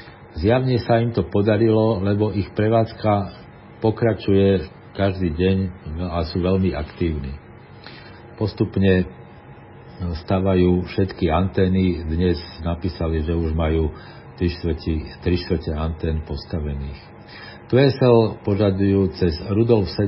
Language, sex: Slovak, male